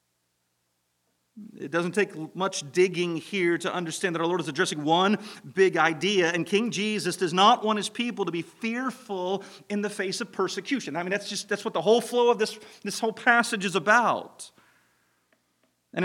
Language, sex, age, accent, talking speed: English, male, 40-59, American, 185 wpm